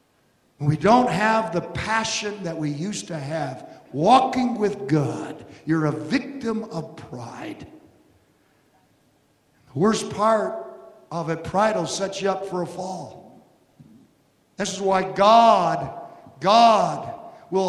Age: 50-69